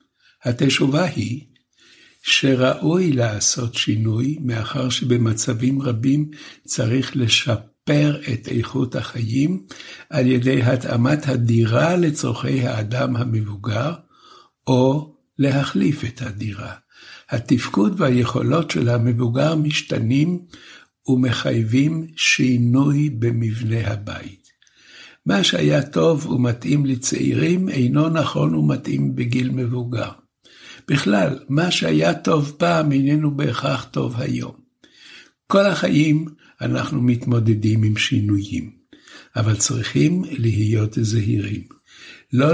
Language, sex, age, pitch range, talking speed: Hebrew, male, 60-79, 115-145 Hz, 90 wpm